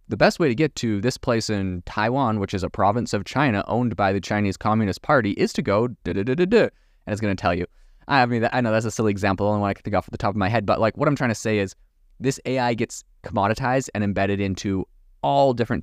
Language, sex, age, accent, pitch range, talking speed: English, male, 20-39, American, 95-115 Hz, 275 wpm